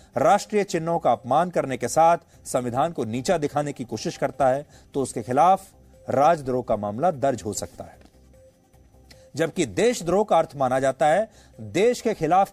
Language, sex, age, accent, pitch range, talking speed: English, male, 40-59, Indian, 130-195 Hz, 170 wpm